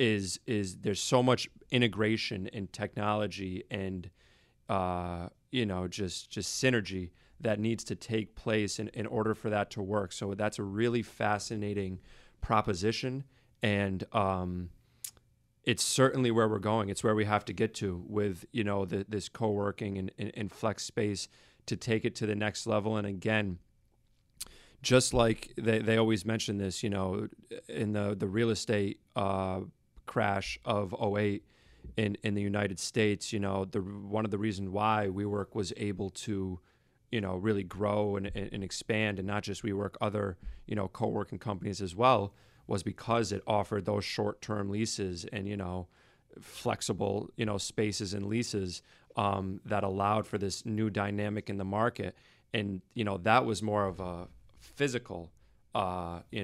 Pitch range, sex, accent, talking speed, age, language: 100-110 Hz, male, American, 170 wpm, 30-49, English